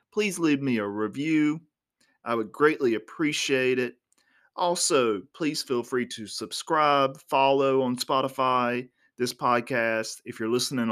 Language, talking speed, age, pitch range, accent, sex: English, 130 wpm, 30-49, 120-155 Hz, American, male